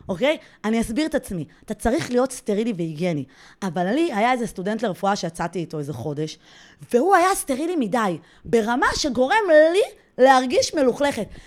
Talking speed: 155 wpm